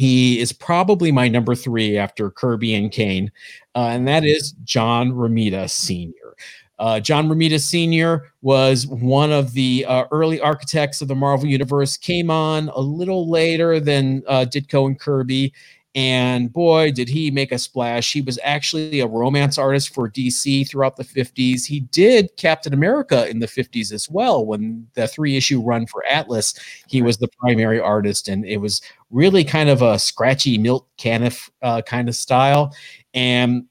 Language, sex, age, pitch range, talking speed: English, male, 40-59, 115-145 Hz, 170 wpm